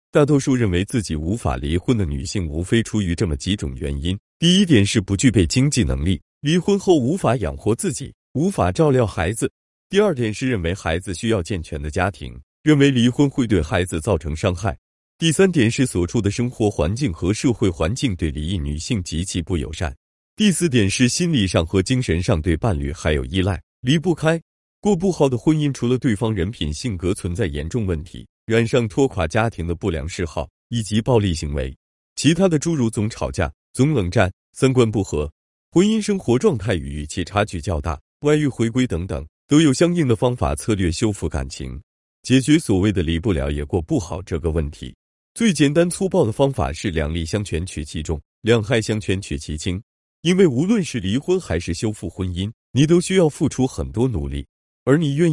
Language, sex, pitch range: Chinese, male, 80-130 Hz